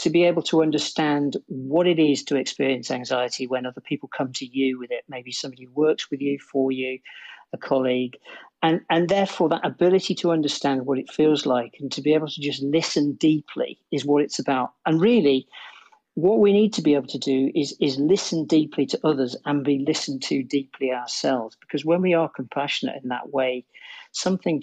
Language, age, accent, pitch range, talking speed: English, 50-69, British, 130-160 Hz, 200 wpm